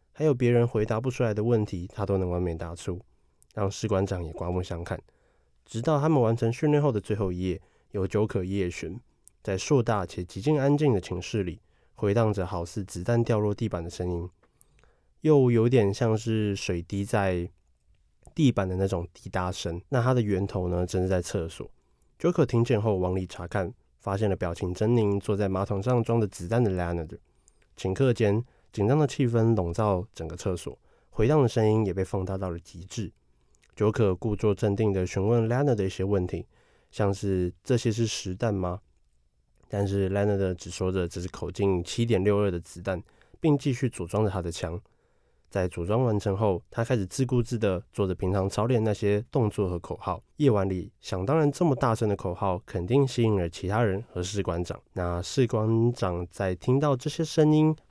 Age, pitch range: 20-39, 90-115 Hz